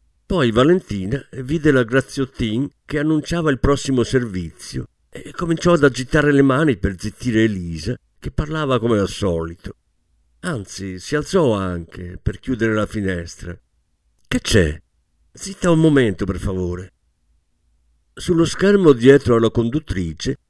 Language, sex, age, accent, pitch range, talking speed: Italian, male, 50-69, native, 85-140 Hz, 130 wpm